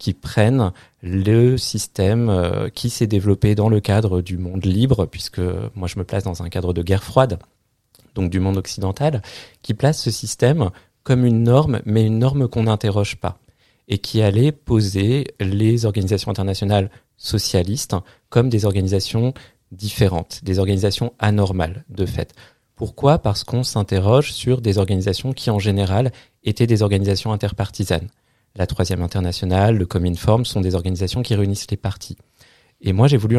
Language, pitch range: French, 95-120 Hz